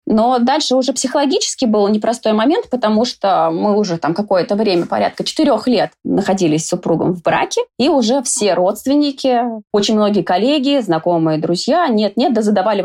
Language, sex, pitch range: Russian, female, 185-250 Hz